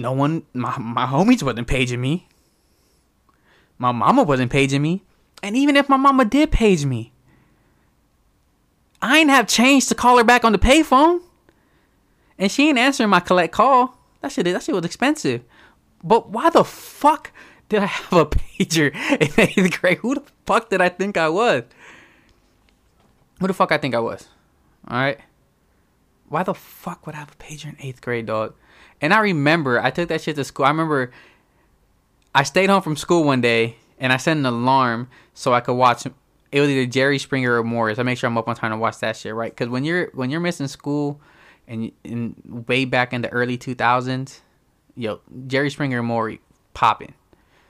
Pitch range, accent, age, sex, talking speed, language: 120-180 Hz, American, 20-39, male, 195 wpm, English